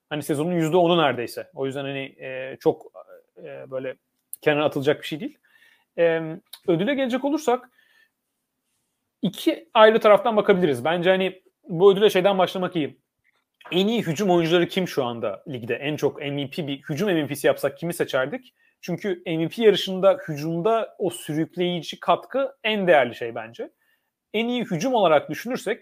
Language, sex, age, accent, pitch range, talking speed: Turkish, male, 40-59, native, 150-210 Hz, 150 wpm